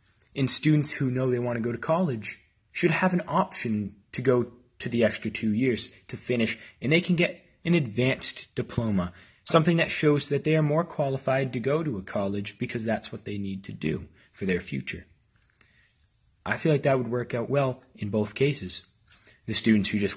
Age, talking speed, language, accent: 30-49, 200 wpm, English, American